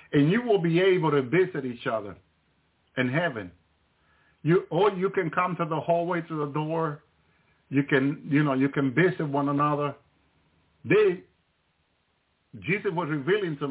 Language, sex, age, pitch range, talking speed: English, male, 50-69, 110-155 Hz, 160 wpm